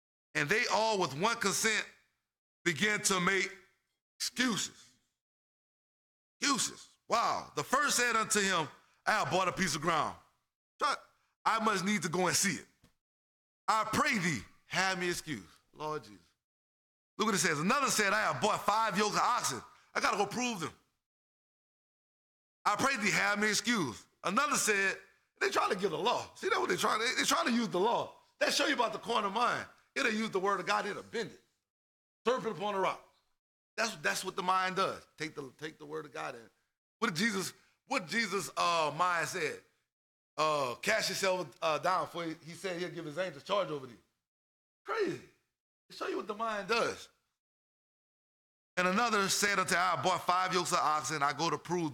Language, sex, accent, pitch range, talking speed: English, male, American, 155-210 Hz, 195 wpm